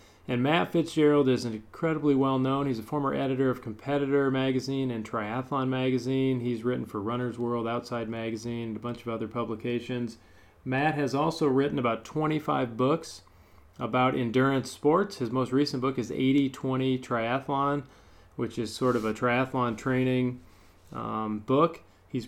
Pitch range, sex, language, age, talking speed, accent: 110-130 Hz, male, English, 40-59, 155 wpm, American